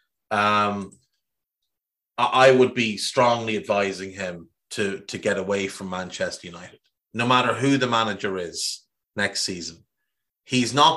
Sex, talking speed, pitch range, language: male, 130 wpm, 105-145 Hz, English